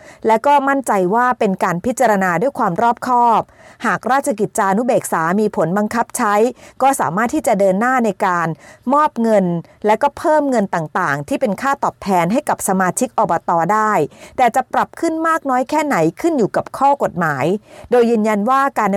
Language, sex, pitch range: Thai, female, 190-255 Hz